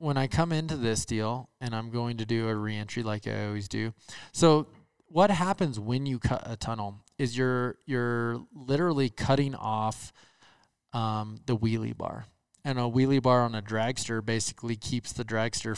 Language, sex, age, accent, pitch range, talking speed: English, male, 20-39, American, 110-135 Hz, 175 wpm